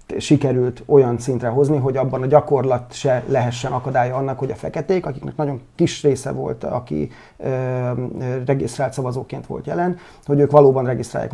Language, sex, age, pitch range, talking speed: Hungarian, male, 30-49, 130-150 Hz, 155 wpm